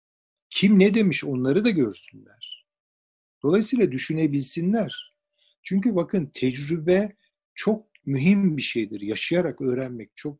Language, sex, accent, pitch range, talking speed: Turkish, male, native, 125-195 Hz, 105 wpm